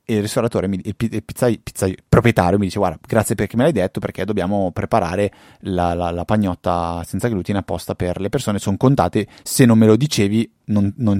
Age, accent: 30-49, native